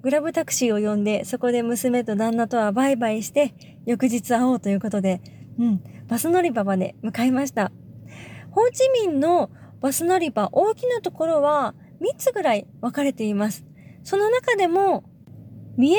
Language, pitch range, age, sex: Japanese, 225-330 Hz, 20-39, female